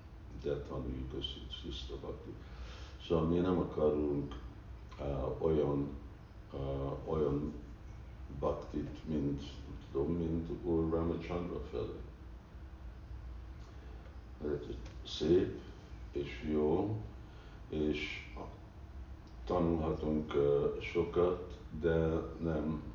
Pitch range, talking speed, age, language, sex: 70-80 Hz, 80 wpm, 60-79, Hungarian, male